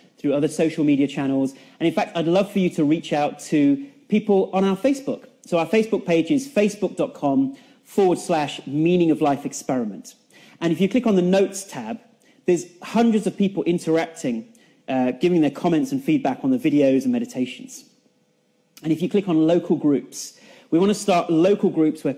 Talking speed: 190 wpm